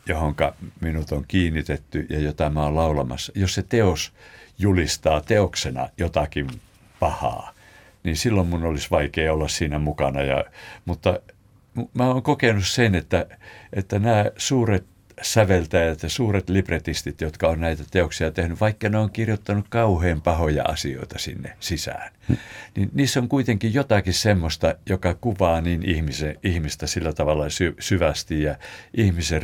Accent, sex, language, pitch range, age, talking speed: native, male, Finnish, 80-105 Hz, 60-79, 135 wpm